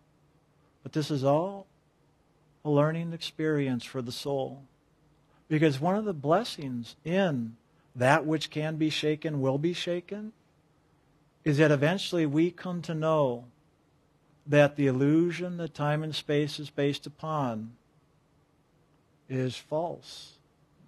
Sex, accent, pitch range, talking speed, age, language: male, American, 130-155 Hz, 125 wpm, 50-69, English